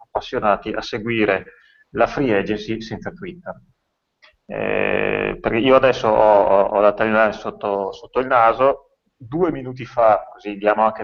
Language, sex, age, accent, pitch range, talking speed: Italian, male, 30-49, native, 100-125 Hz, 135 wpm